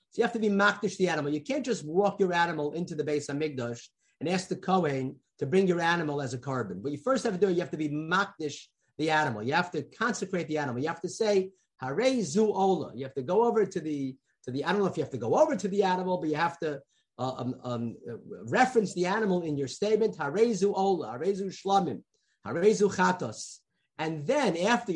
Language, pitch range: English, 155-205 Hz